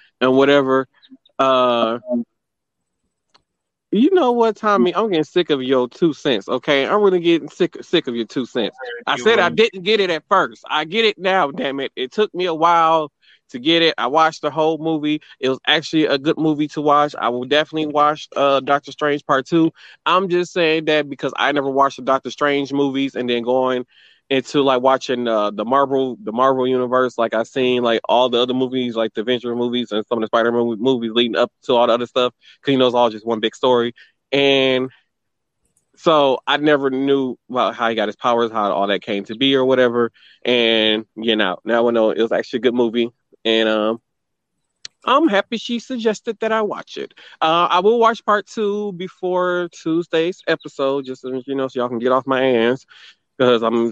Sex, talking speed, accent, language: male, 210 wpm, American, English